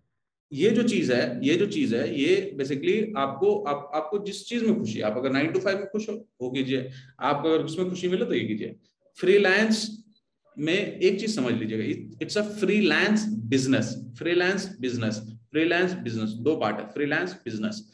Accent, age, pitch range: native, 30-49, 130-210 Hz